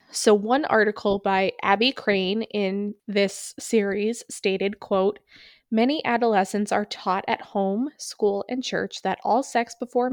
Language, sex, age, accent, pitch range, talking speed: English, female, 20-39, American, 190-230 Hz, 140 wpm